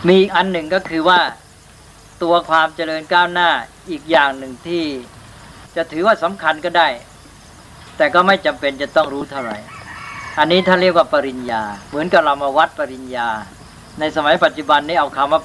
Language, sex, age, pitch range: Thai, female, 60-79, 130-170 Hz